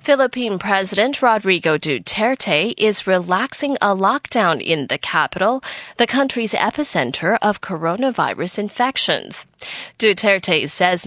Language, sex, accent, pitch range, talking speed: English, female, American, 180-245 Hz, 105 wpm